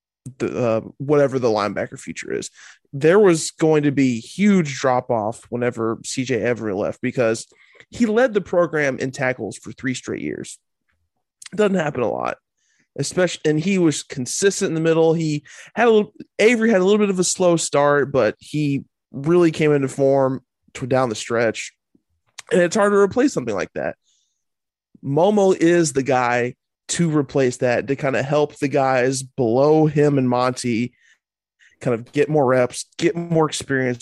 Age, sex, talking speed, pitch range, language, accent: 20-39, male, 175 wpm, 125-165 Hz, English, American